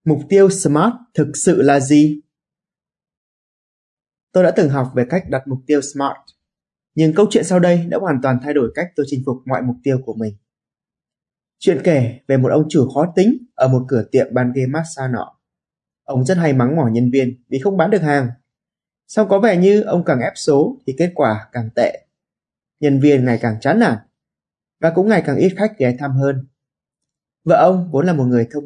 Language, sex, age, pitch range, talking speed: Vietnamese, male, 20-39, 130-205 Hz, 210 wpm